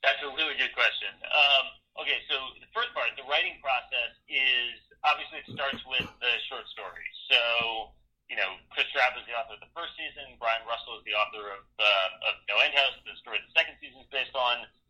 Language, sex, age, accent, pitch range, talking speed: English, male, 40-59, American, 110-135 Hz, 215 wpm